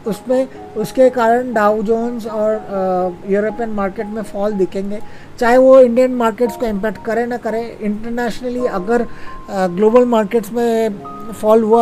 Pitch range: 200-240 Hz